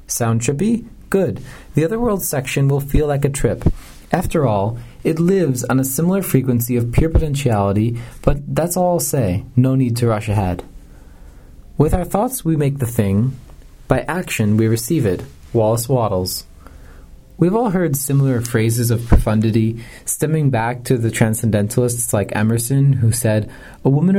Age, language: 30-49, English